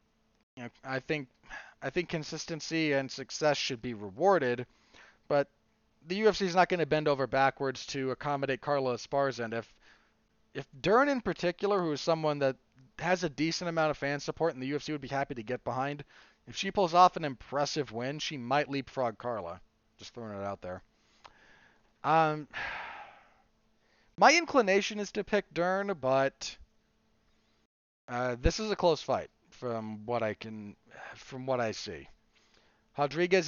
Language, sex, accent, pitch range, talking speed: English, male, American, 125-170 Hz, 160 wpm